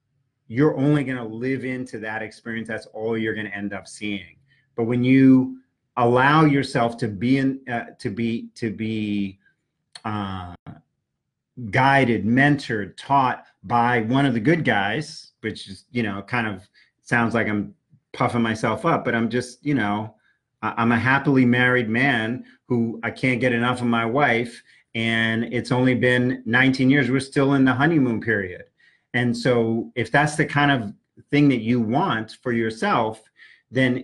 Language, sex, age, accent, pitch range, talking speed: English, male, 40-59, American, 115-140 Hz, 165 wpm